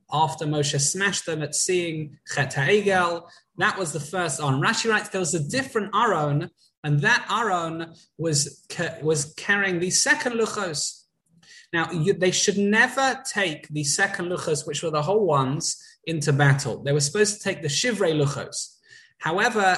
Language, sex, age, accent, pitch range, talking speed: English, male, 20-39, British, 150-200 Hz, 165 wpm